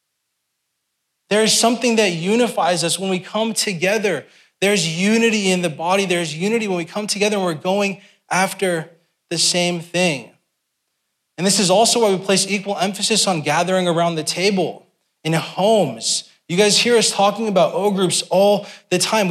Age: 20-39